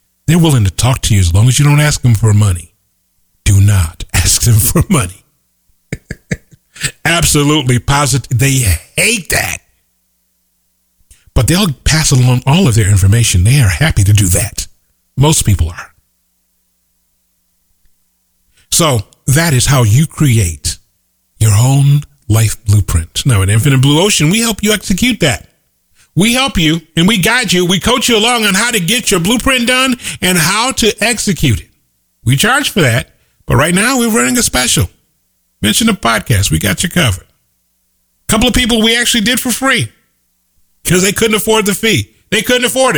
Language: English